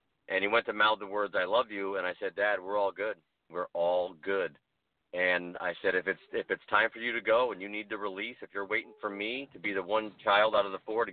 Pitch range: 95-120 Hz